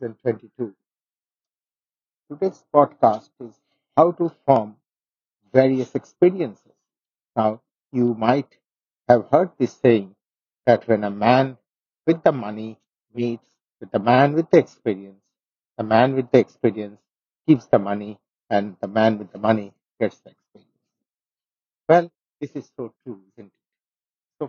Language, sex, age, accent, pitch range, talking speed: English, male, 50-69, Indian, 110-155 Hz, 135 wpm